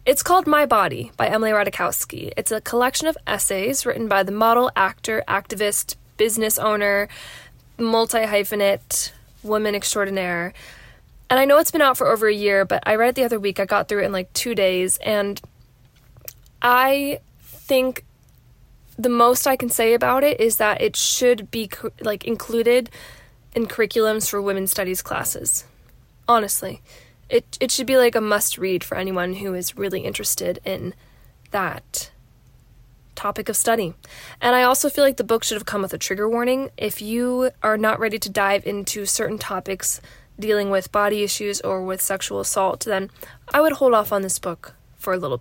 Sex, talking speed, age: female, 175 wpm, 20-39